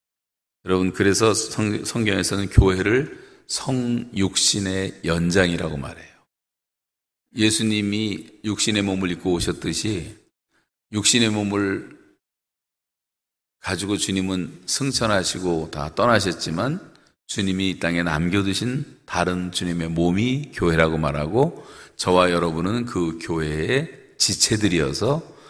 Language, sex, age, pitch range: Korean, male, 40-59, 85-110 Hz